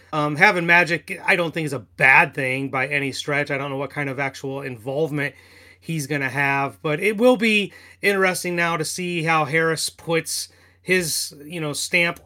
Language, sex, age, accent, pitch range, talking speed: English, male, 30-49, American, 140-175 Hz, 195 wpm